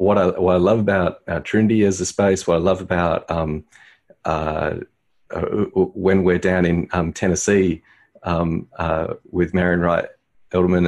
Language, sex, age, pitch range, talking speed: English, male, 40-59, 85-100 Hz, 160 wpm